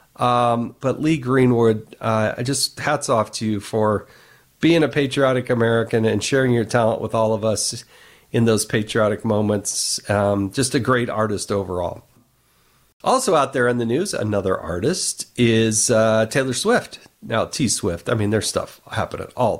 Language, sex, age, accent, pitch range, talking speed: English, male, 40-59, American, 110-170 Hz, 165 wpm